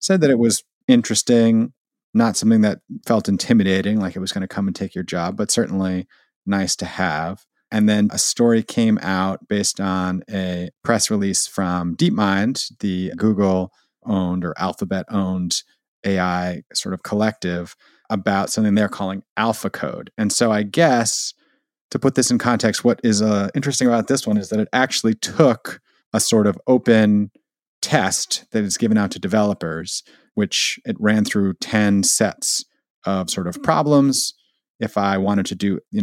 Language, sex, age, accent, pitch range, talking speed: English, male, 30-49, American, 95-115 Hz, 165 wpm